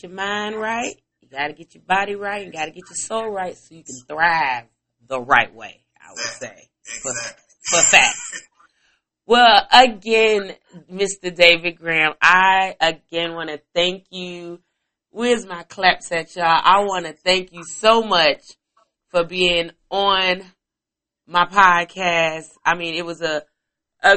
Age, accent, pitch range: 30-49, American, 160-205 Hz